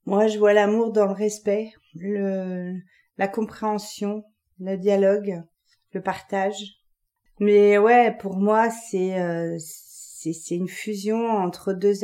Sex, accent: female, French